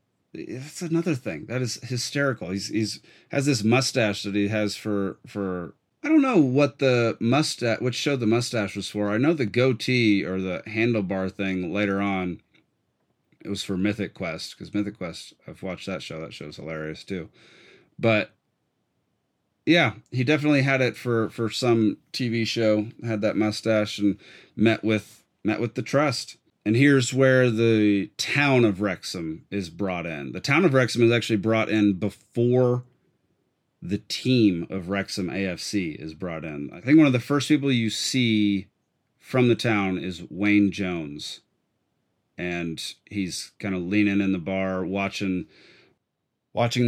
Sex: male